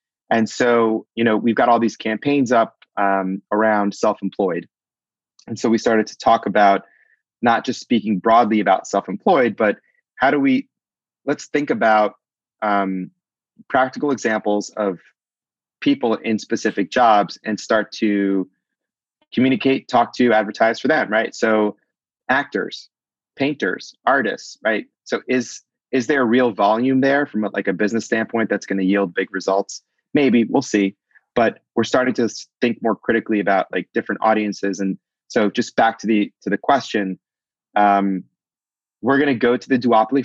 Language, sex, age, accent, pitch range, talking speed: English, male, 30-49, American, 100-120 Hz, 160 wpm